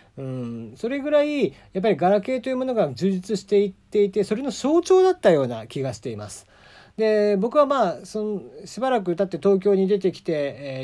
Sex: male